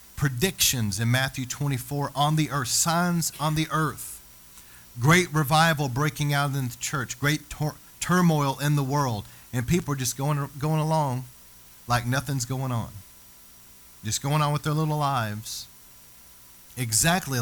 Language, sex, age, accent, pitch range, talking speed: English, male, 40-59, American, 95-140 Hz, 145 wpm